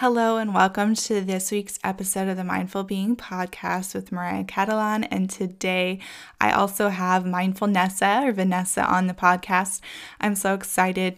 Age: 10-29